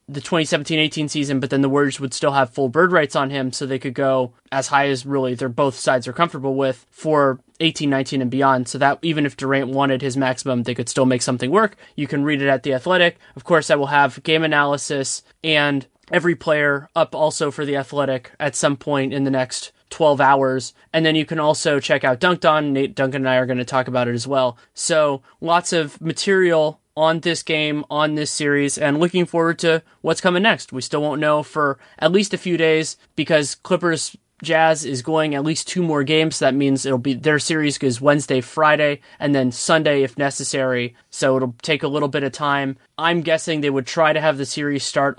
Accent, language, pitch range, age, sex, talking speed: American, English, 135-155 Hz, 20-39, male, 220 wpm